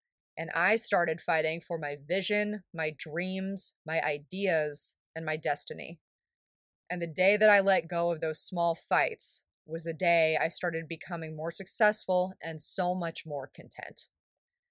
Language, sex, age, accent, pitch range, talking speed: English, female, 20-39, American, 165-200 Hz, 155 wpm